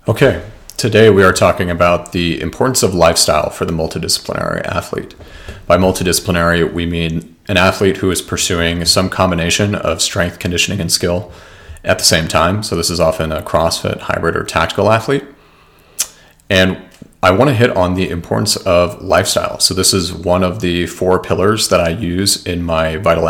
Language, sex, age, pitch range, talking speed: English, male, 40-59, 85-100 Hz, 175 wpm